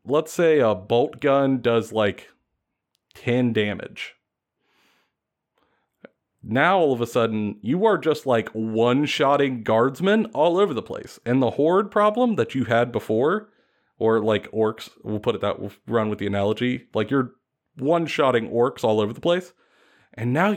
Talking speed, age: 160 wpm, 30-49